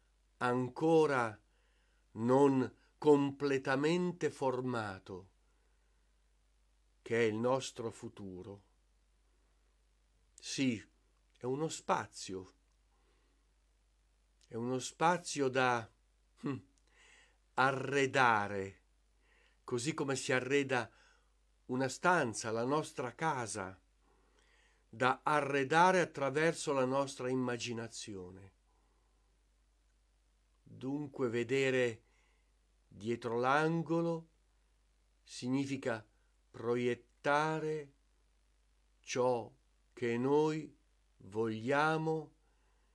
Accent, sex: native, male